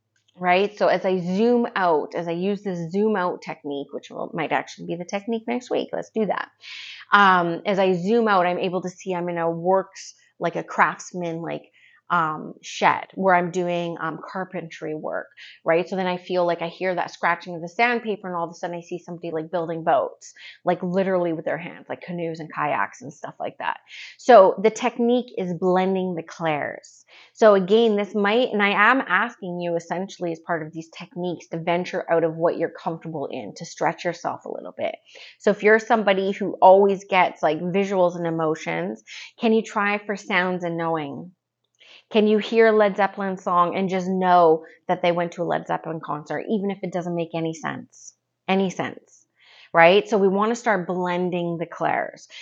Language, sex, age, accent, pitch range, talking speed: English, female, 30-49, American, 170-200 Hz, 205 wpm